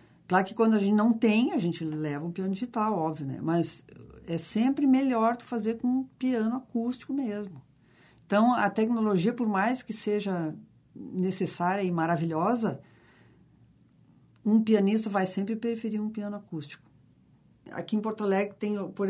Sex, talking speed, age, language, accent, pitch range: female, 155 wpm, 50-69, Portuguese, Brazilian, 175-230 Hz